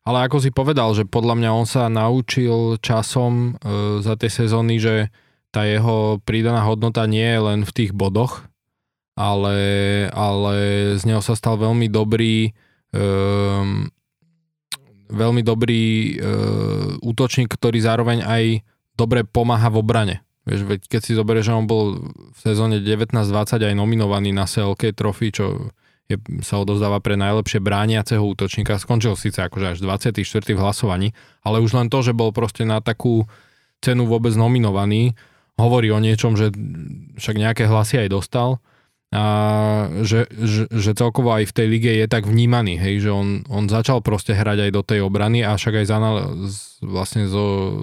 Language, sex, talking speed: Slovak, male, 150 wpm